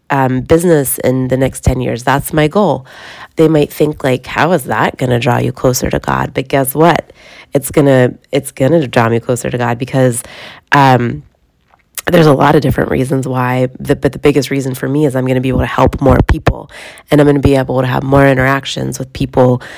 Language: English